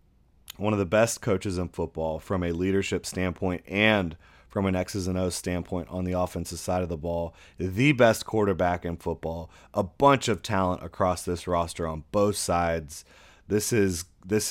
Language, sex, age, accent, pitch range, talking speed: English, male, 30-49, American, 90-105 Hz, 180 wpm